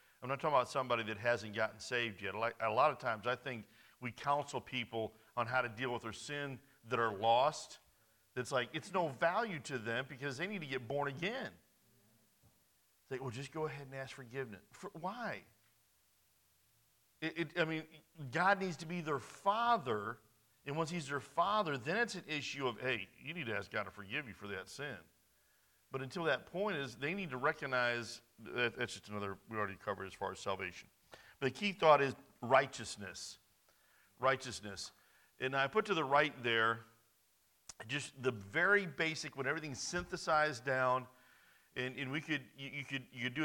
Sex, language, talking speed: male, English, 190 wpm